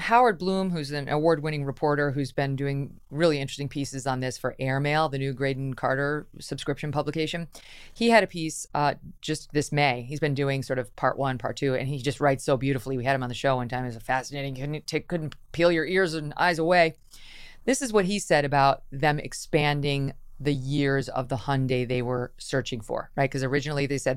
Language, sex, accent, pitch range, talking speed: English, female, American, 130-155 Hz, 215 wpm